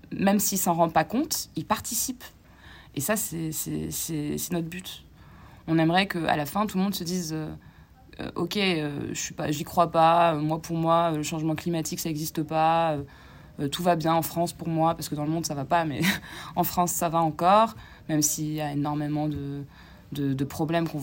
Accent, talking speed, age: French, 225 wpm, 20-39